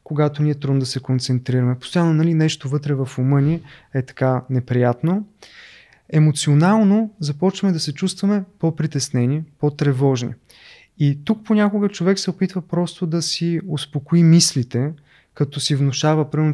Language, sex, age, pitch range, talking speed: Bulgarian, male, 20-39, 130-165 Hz, 140 wpm